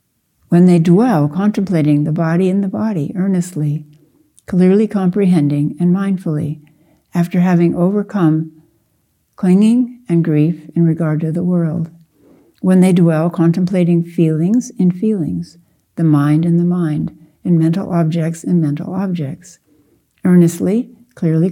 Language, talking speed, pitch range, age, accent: English, 125 wpm, 160-190 Hz, 60-79, American